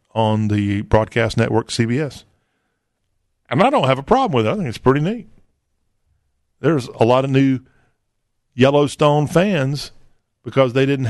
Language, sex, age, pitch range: English, male, 50-69, 115-135 Hz